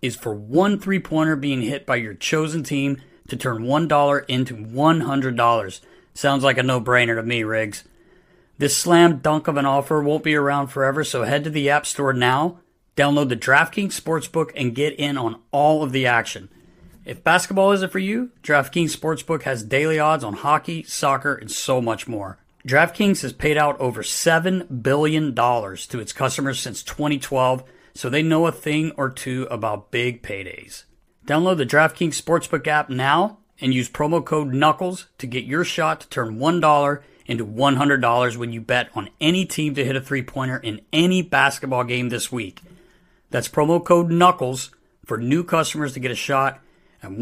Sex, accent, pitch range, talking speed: male, American, 130-160 Hz, 175 wpm